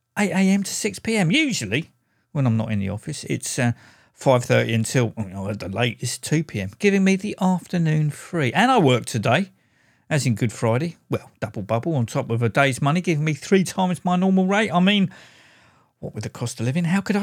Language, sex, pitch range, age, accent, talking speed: English, male, 120-170 Hz, 50-69, British, 200 wpm